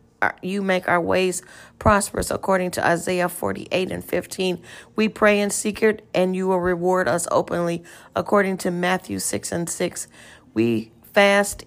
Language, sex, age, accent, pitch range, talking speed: English, female, 40-59, American, 170-195 Hz, 150 wpm